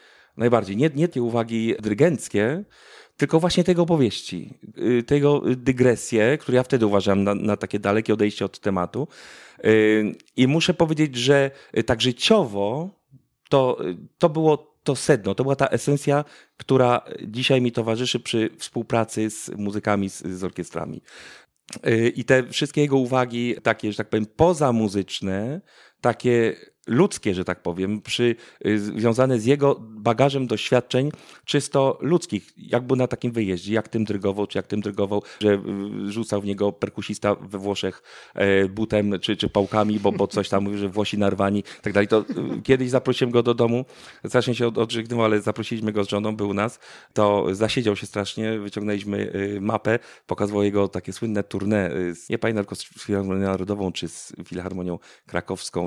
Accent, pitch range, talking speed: native, 100-125 Hz, 155 wpm